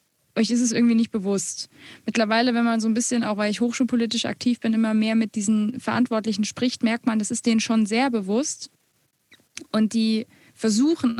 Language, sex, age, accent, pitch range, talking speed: German, female, 20-39, German, 210-240 Hz, 190 wpm